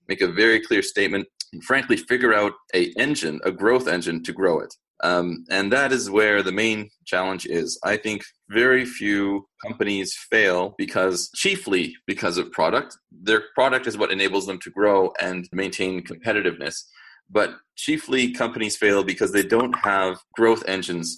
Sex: male